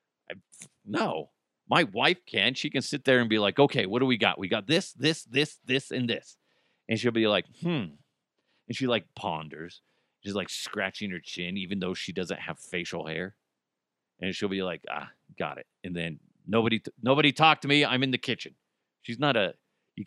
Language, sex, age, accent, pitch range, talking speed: English, male, 40-59, American, 120-200 Hz, 200 wpm